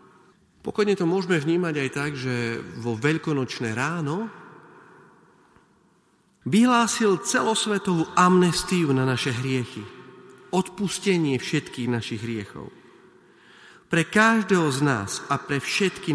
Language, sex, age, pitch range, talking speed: Slovak, male, 40-59, 125-180 Hz, 100 wpm